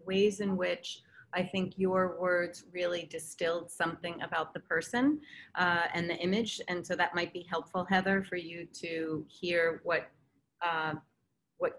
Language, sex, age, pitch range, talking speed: English, female, 30-49, 165-185 Hz, 160 wpm